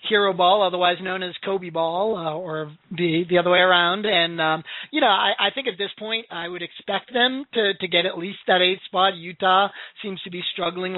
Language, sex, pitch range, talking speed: English, male, 170-200 Hz, 225 wpm